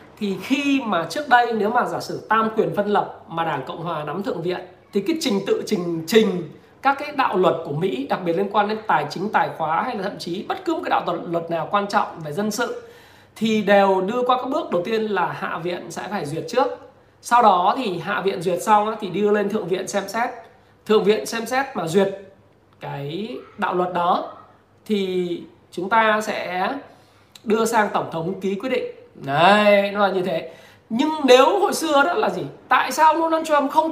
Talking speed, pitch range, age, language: 220 wpm, 185-255 Hz, 20-39, Vietnamese